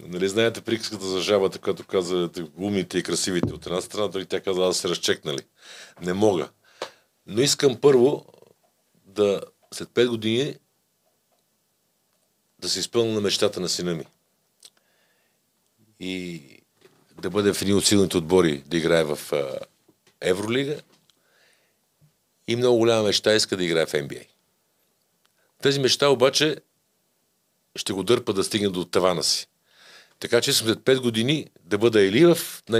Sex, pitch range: male, 95-125 Hz